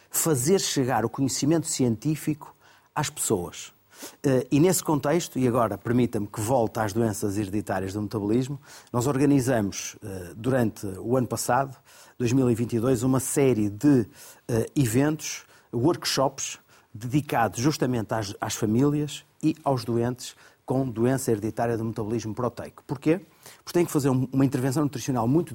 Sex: male